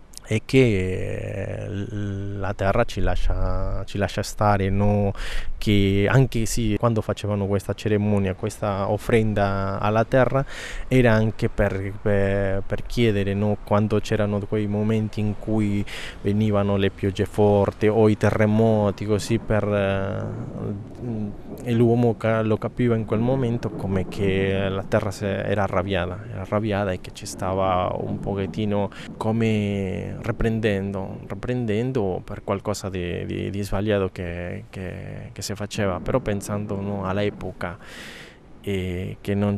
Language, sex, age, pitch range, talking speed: Italian, male, 20-39, 95-110 Hz, 130 wpm